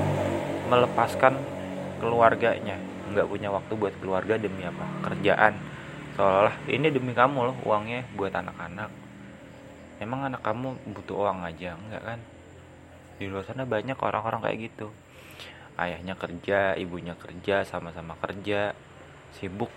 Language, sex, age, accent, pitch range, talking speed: Indonesian, male, 20-39, native, 95-120 Hz, 120 wpm